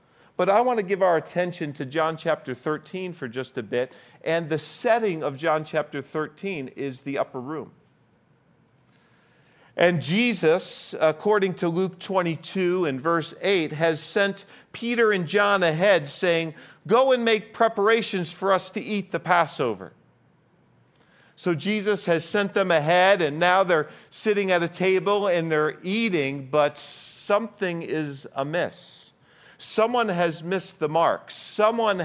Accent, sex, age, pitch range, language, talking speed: American, male, 50-69, 145-190 Hz, English, 145 wpm